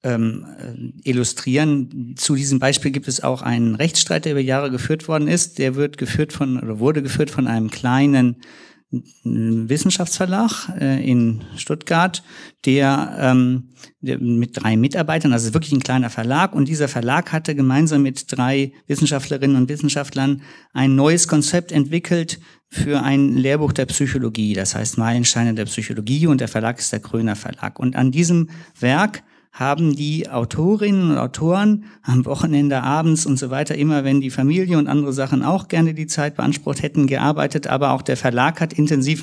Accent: German